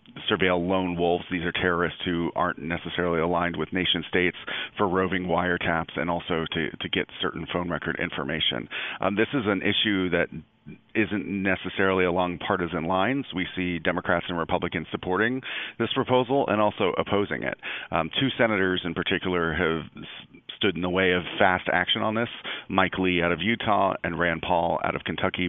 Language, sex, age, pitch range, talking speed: English, male, 40-59, 85-95 Hz, 175 wpm